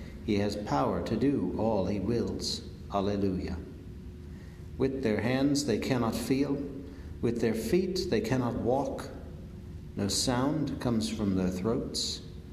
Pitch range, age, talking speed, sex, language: 90-115 Hz, 60-79, 130 wpm, male, English